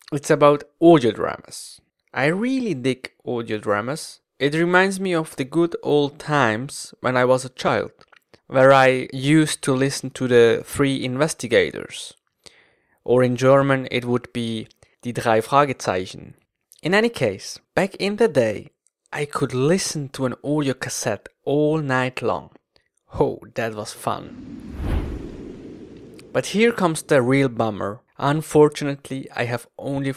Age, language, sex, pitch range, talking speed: 20-39, English, male, 120-155 Hz, 140 wpm